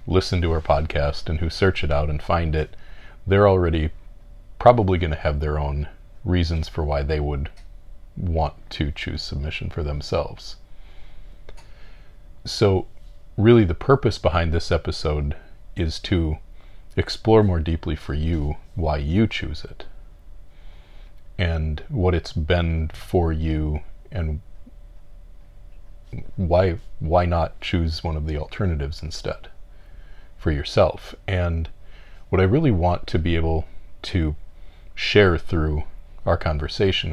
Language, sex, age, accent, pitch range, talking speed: English, male, 40-59, American, 75-90 Hz, 130 wpm